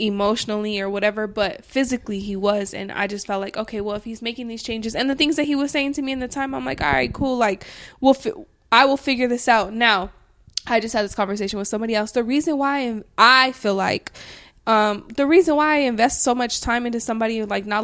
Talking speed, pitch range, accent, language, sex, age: 240 wpm, 205-250 Hz, American, English, female, 20-39